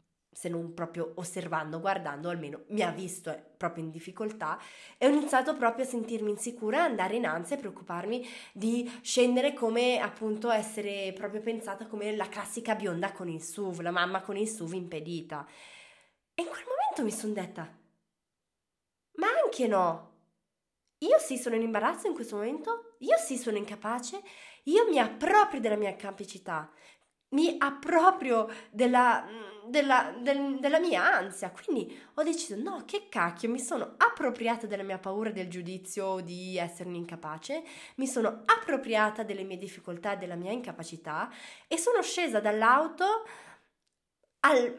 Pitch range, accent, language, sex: 190-275 Hz, native, Italian, female